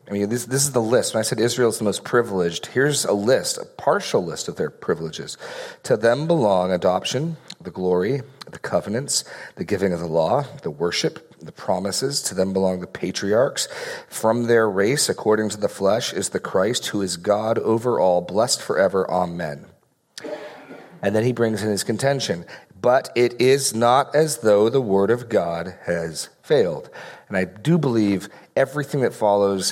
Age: 40-59